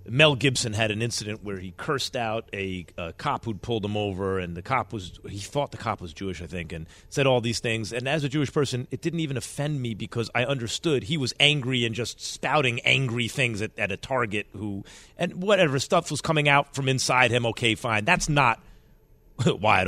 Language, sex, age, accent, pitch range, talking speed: English, male, 40-59, American, 115-180 Hz, 225 wpm